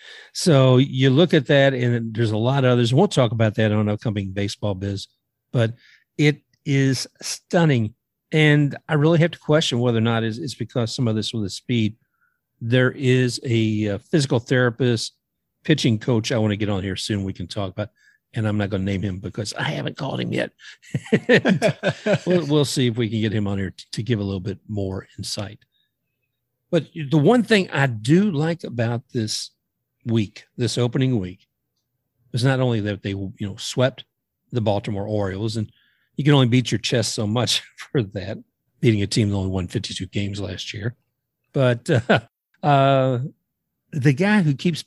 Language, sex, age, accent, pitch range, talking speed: English, male, 50-69, American, 105-145 Hz, 185 wpm